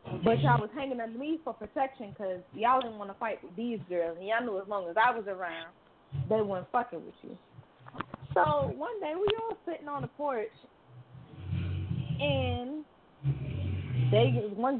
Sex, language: female, English